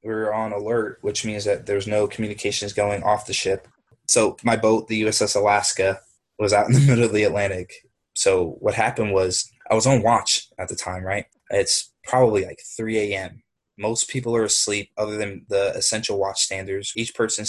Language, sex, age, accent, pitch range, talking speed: English, male, 20-39, American, 95-110 Hz, 195 wpm